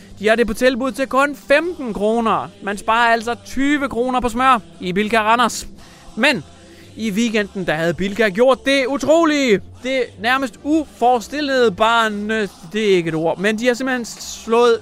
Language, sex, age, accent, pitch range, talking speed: English, male, 30-49, Danish, 190-240 Hz, 175 wpm